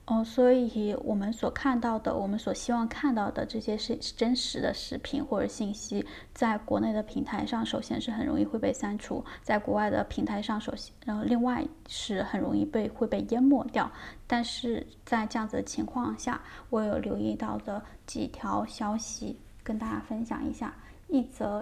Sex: female